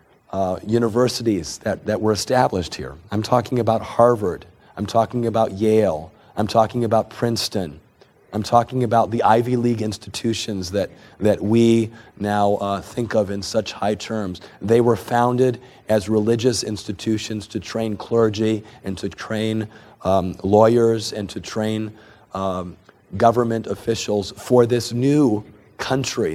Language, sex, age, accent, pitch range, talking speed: English, male, 40-59, American, 95-115 Hz, 140 wpm